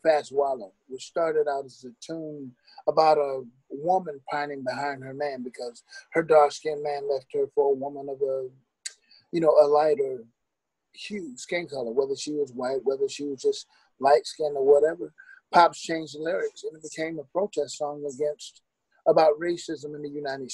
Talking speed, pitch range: 175 wpm, 145-200 Hz